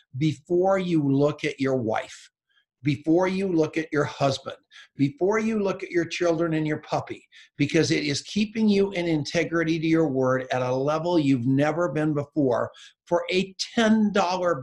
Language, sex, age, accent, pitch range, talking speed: English, male, 50-69, American, 150-200 Hz, 170 wpm